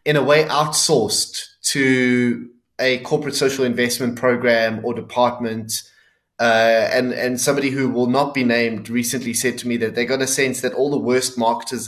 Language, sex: English, male